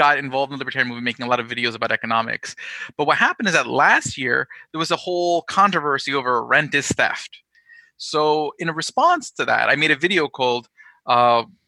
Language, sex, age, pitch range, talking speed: English, male, 30-49, 125-175 Hz, 210 wpm